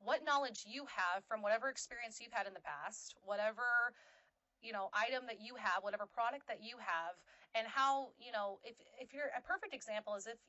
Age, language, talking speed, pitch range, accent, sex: 30-49, English, 205 wpm, 205-265 Hz, American, female